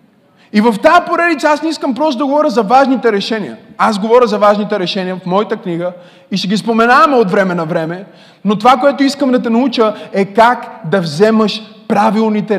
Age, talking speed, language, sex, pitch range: 20-39, 195 wpm, Bulgarian, male, 195-240 Hz